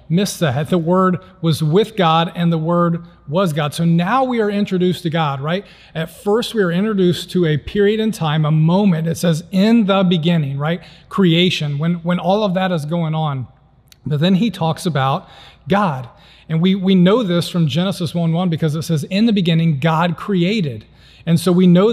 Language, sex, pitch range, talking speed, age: English, male, 160-190 Hz, 200 wpm, 40-59